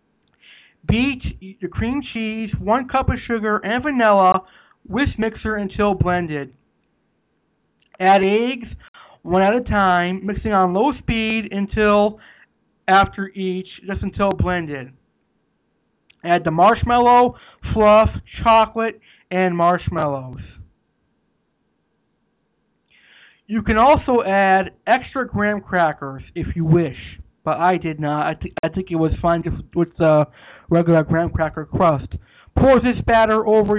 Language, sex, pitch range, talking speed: English, male, 170-215 Hz, 120 wpm